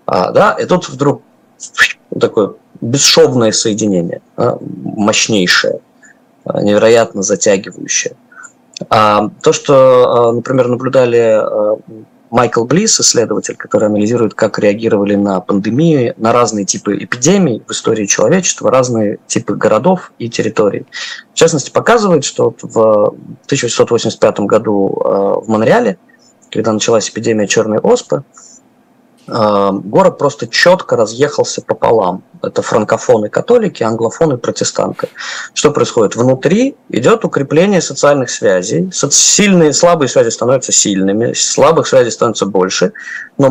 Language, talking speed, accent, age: Russian, 110 wpm, native, 20-39